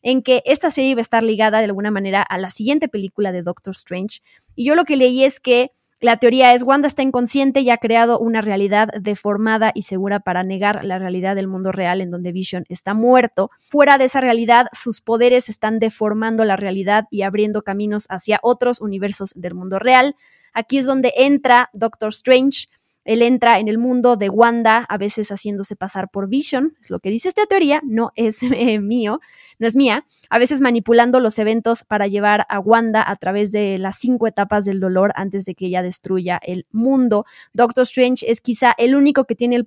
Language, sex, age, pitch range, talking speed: Spanish, female, 20-39, 205-245 Hz, 205 wpm